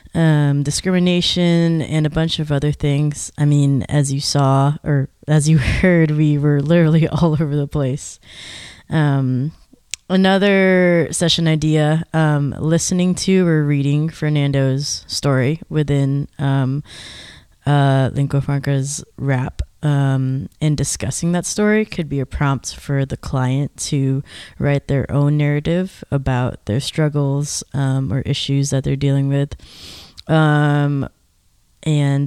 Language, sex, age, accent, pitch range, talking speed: English, female, 20-39, American, 135-155 Hz, 130 wpm